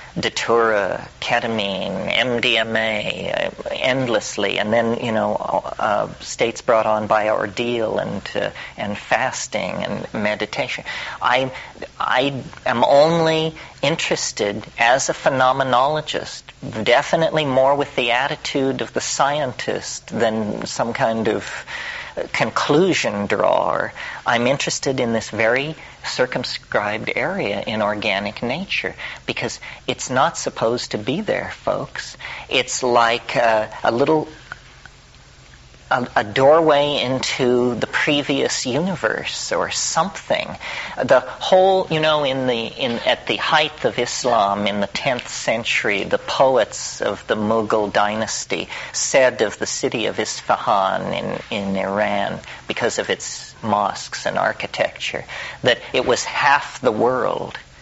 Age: 40-59